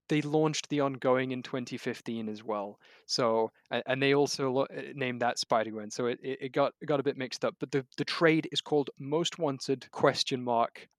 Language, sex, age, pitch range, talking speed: English, male, 20-39, 120-140 Hz, 210 wpm